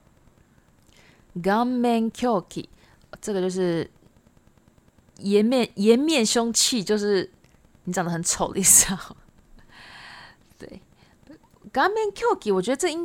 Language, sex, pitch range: Japanese, female, 180-240 Hz